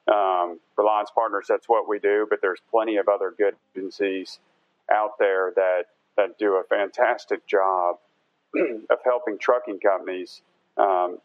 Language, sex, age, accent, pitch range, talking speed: English, male, 40-59, American, 95-125 Hz, 150 wpm